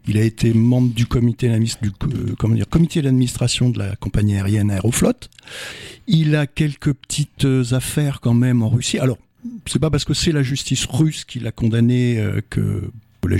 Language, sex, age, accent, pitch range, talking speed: French, male, 60-79, French, 115-150 Hz, 180 wpm